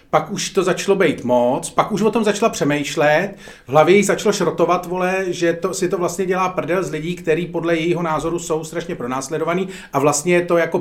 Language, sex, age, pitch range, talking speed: Czech, male, 40-59, 155-200 Hz, 215 wpm